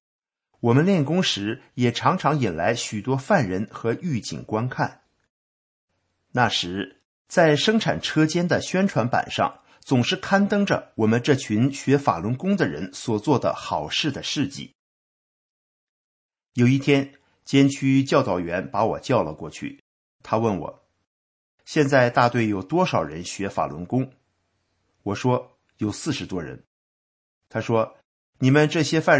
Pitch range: 100-140 Hz